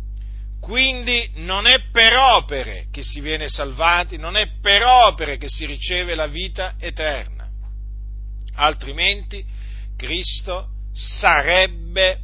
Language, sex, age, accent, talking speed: Italian, male, 50-69, native, 110 wpm